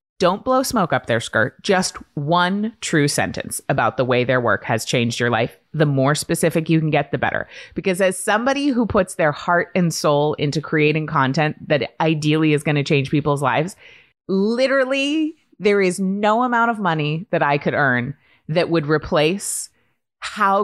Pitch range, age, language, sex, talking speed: 145-190 Hz, 30-49, English, female, 180 wpm